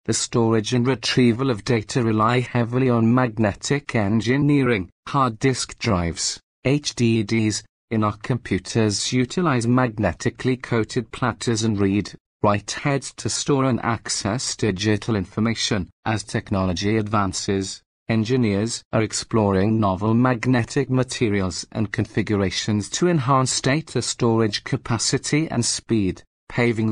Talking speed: 115 wpm